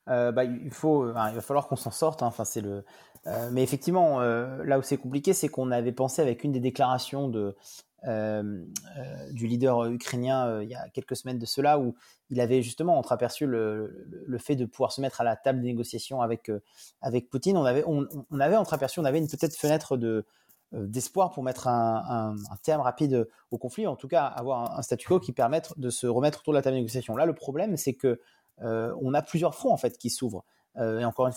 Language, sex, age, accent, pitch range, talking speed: French, male, 30-49, French, 115-145 Hz, 245 wpm